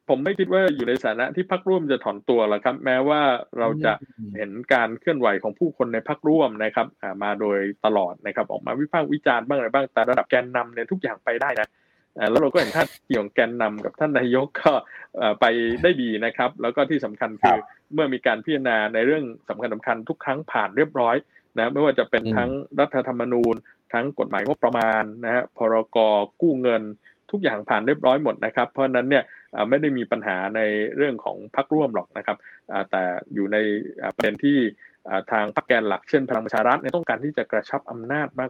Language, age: Thai, 20-39